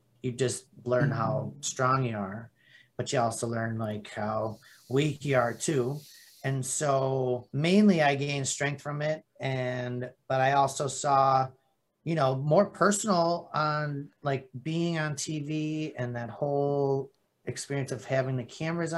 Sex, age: male, 30-49